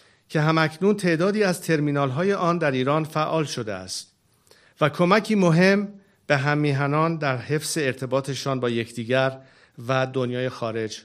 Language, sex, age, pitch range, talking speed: Persian, male, 50-69, 130-190 Hz, 140 wpm